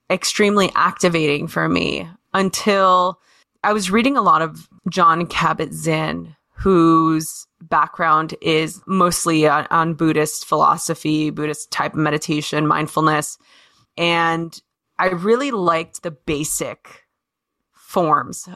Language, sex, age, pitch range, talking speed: English, female, 20-39, 160-190 Hz, 105 wpm